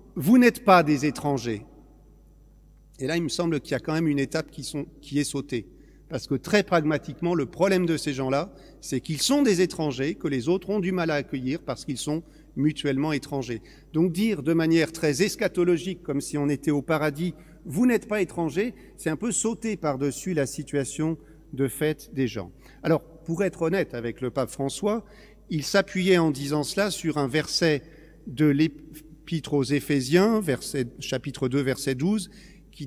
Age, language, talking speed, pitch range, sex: 50-69, French, 185 wpm, 145-180 Hz, male